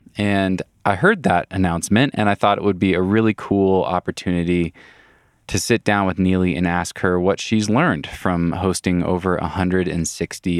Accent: American